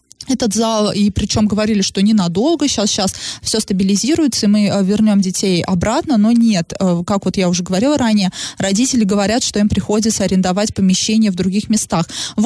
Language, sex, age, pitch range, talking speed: Russian, female, 20-39, 195-230 Hz, 170 wpm